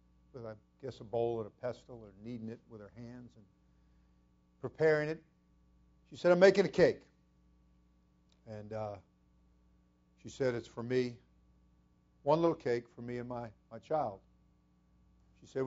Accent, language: American, English